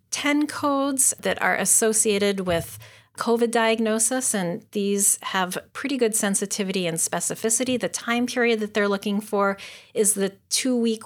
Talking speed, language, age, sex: 140 wpm, English, 40-59, female